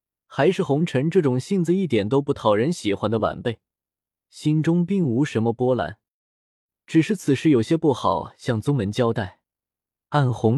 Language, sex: Chinese, male